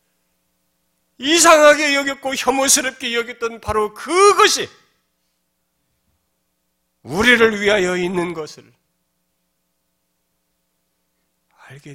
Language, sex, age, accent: Korean, male, 40-59, native